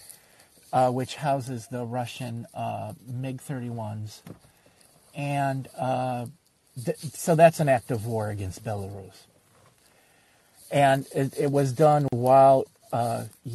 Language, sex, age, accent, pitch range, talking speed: English, male, 40-59, American, 115-145 Hz, 110 wpm